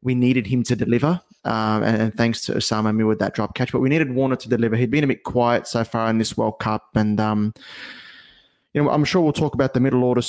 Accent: Australian